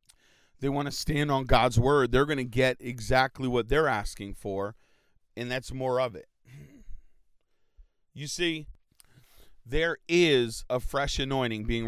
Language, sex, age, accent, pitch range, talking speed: English, male, 40-59, American, 115-145 Hz, 145 wpm